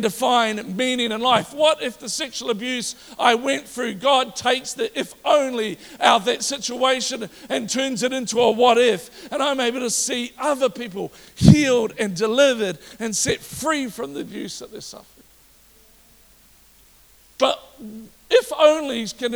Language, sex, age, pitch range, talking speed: English, male, 50-69, 220-260 Hz, 160 wpm